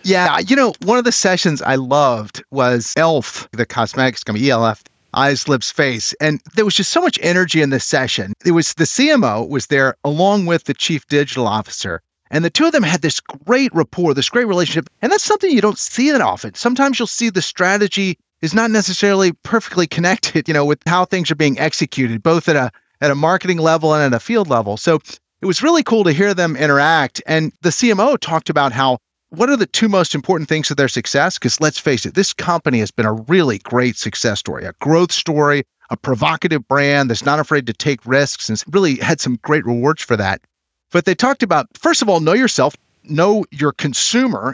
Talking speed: 215 wpm